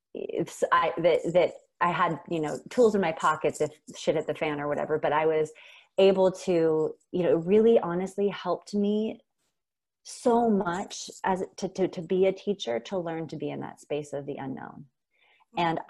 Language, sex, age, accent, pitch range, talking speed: English, female, 30-49, American, 155-190 Hz, 185 wpm